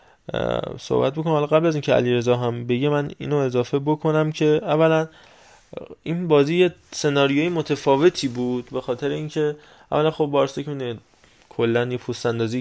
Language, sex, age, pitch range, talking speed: Persian, male, 20-39, 120-145 Hz, 145 wpm